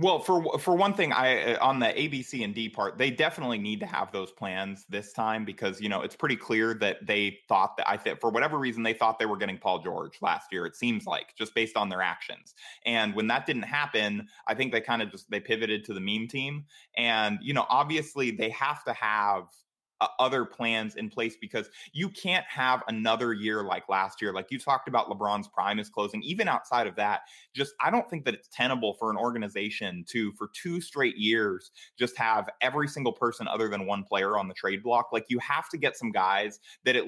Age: 20-39